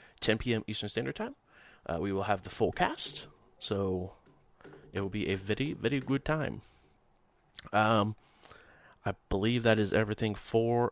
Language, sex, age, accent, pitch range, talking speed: English, male, 30-49, American, 90-110 Hz, 155 wpm